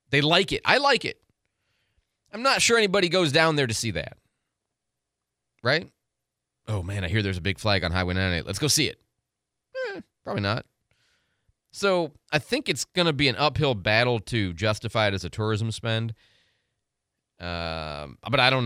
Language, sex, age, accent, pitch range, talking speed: English, male, 30-49, American, 105-140 Hz, 180 wpm